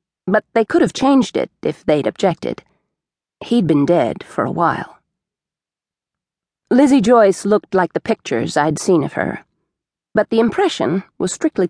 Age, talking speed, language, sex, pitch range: 40-59, 155 wpm, English, female, 165-220 Hz